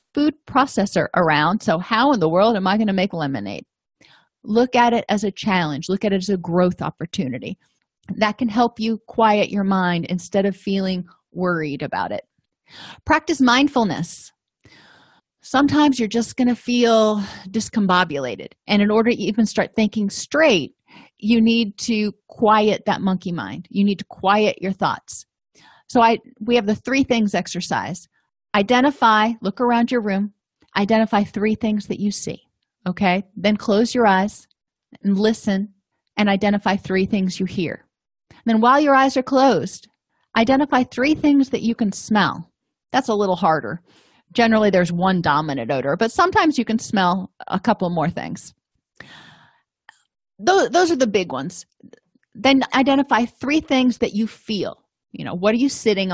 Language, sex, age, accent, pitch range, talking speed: English, female, 30-49, American, 190-235 Hz, 160 wpm